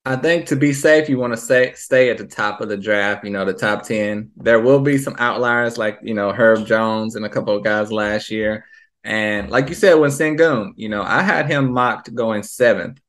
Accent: American